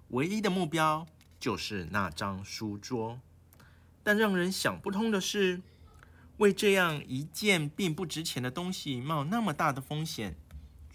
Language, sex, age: Chinese, male, 50-69